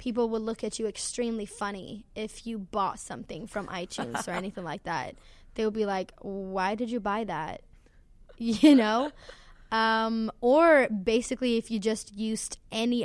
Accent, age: American, 10-29